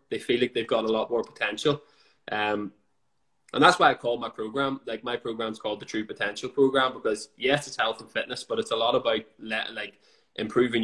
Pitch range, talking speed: 110-135 Hz, 215 wpm